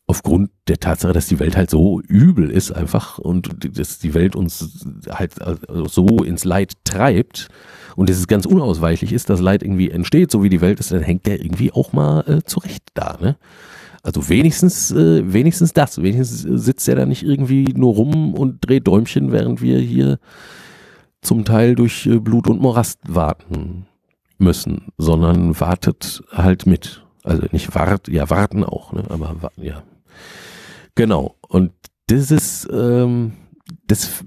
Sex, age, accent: male, 50-69, German